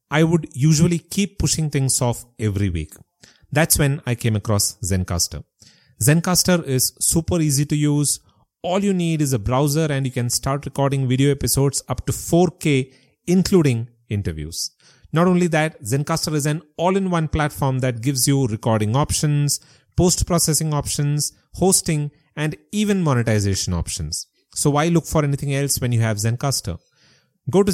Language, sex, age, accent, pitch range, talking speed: English, male, 30-49, Indian, 115-160 Hz, 155 wpm